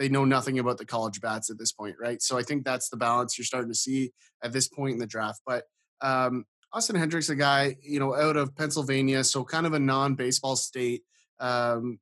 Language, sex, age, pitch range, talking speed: English, male, 30-49, 125-150 Hz, 225 wpm